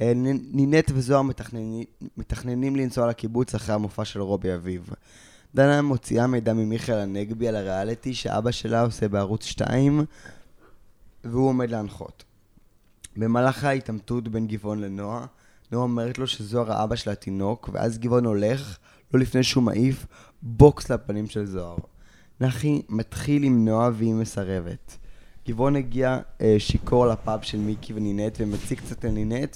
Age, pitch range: 20-39, 105-125 Hz